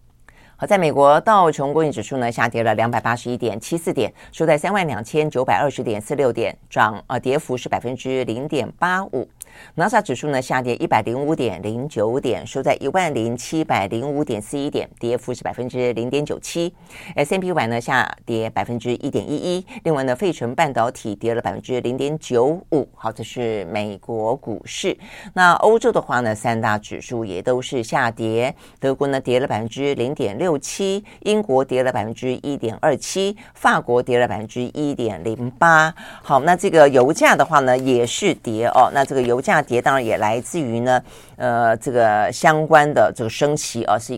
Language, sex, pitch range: Chinese, female, 115-150 Hz